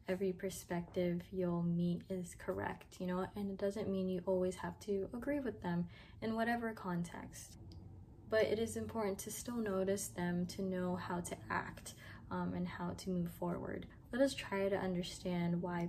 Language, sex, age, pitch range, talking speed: English, female, 10-29, 175-195 Hz, 180 wpm